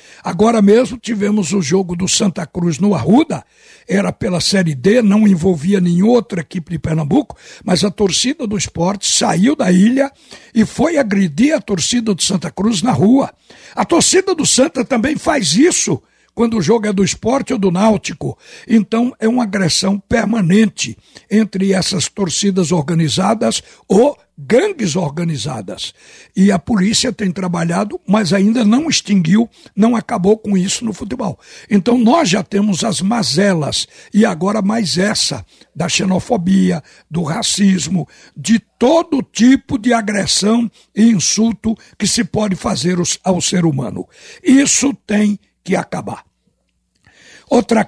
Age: 60-79